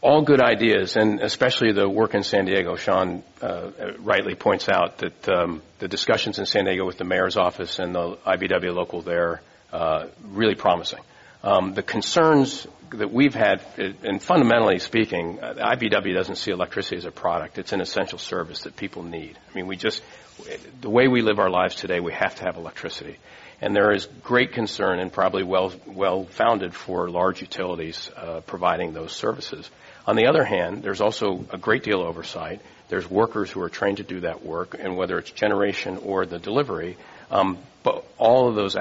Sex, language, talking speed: male, English, 190 wpm